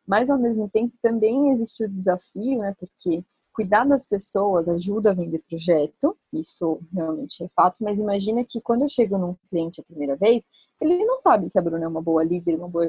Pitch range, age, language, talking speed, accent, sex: 165-215 Hz, 30-49, Portuguese, 205 wpm, Brazilian, female